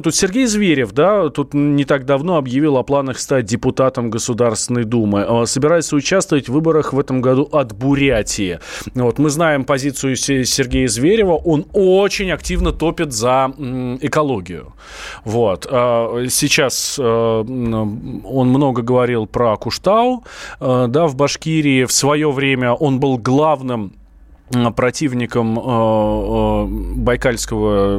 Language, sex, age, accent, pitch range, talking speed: Russian, male, 20-39, native, 115-145 Hz, 105 wpm